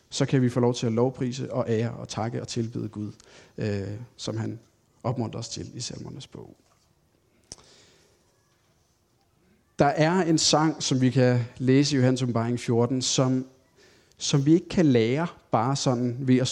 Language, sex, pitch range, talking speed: English, male, 120-150 Hz, 165 wpm